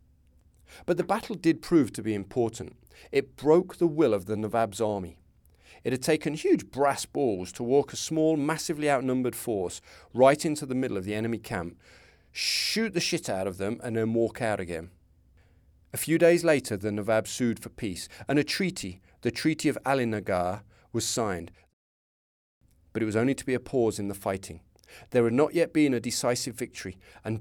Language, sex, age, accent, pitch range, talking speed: English, male, 40-59, British, 95-140 Hz, 190 wpm